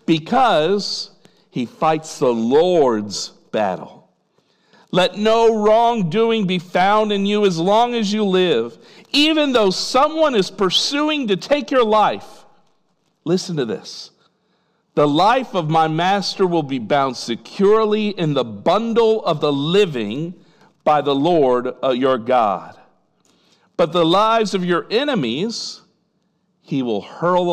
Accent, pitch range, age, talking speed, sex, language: American, 165-230 Hz, 50-69, 130 wpm, male, English